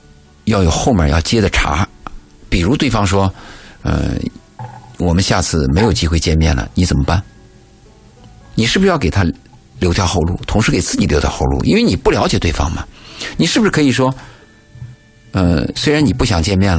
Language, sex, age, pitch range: Chinese, male, 50-69, 85-115 Hz